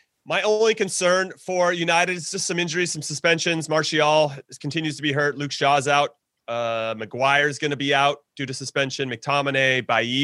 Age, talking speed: 30-49, 175 wpm